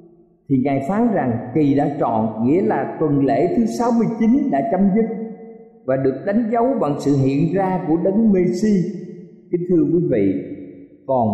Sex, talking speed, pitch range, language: male, 170 wpm, 135-200 Hz, Vietnamese